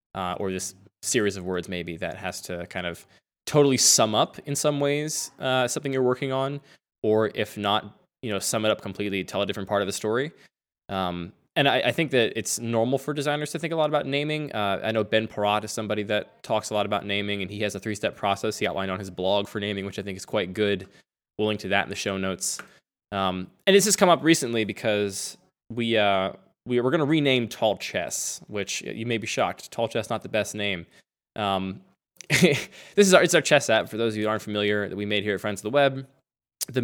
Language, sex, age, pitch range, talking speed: English, male, 20-39, 100-135 Hz, 240 wpm